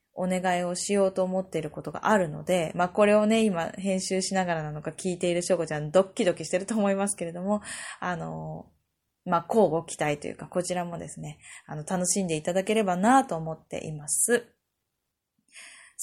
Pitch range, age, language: 165-230 Hz, 20-39, Japanese